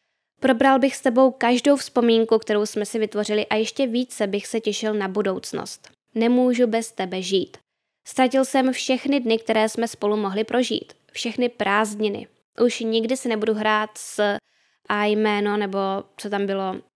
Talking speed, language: 160 wpm, Czech